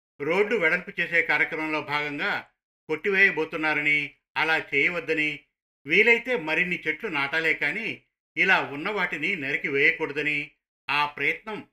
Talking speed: 100 wpm